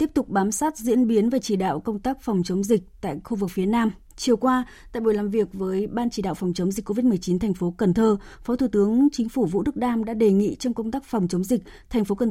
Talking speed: 280 wpm